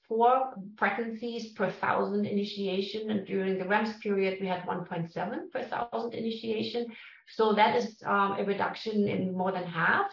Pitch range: 185-225 Hz